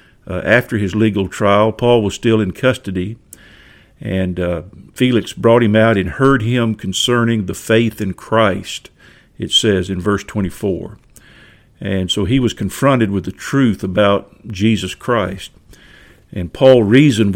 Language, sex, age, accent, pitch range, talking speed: English, male, 50-69, American, 95-115 Hz, 150 wpm